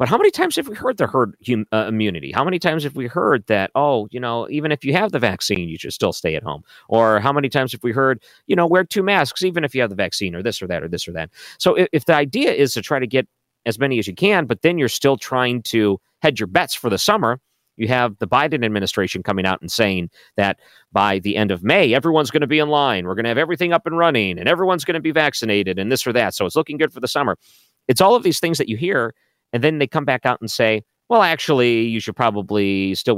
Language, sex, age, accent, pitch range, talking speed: English, male, 40-59, American, 100-140 Hz, 280 wpm